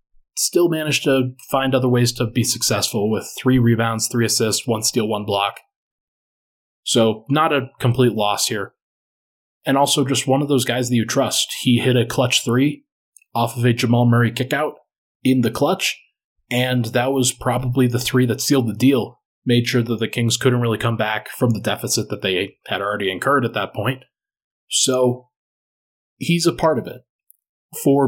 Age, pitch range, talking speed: 20-39, 115-135 Hz, 180 wpm